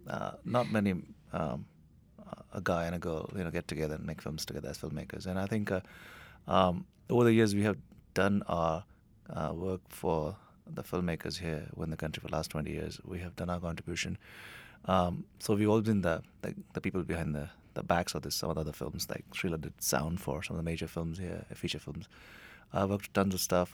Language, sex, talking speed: English, male, 225 wpm